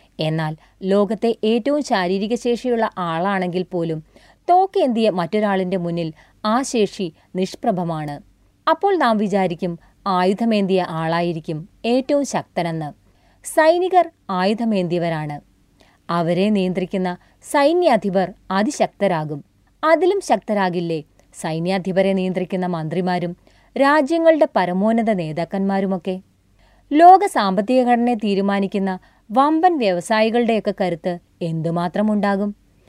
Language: Malayalam